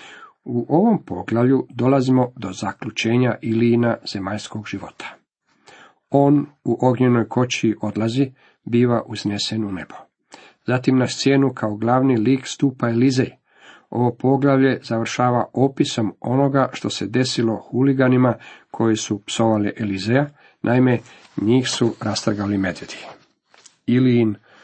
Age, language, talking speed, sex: 50-69, Croatian, 110 wpm, male